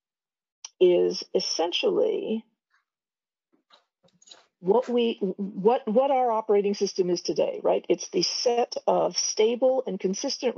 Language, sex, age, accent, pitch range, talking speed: English, female, 50-69, American, 195-280 Hz, 110 wpm